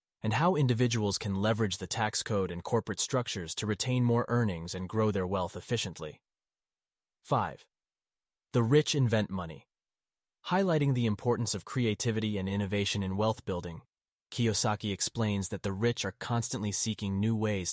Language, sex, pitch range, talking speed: English, male, 100-120 Hz, 150 wpm